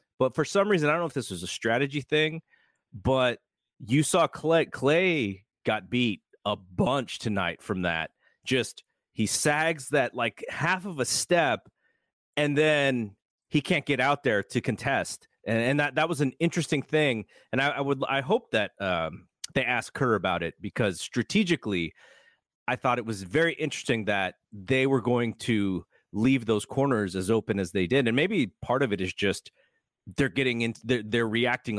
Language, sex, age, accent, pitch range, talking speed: English, male, 30-49, American, 105-150 Hz, 185 wpm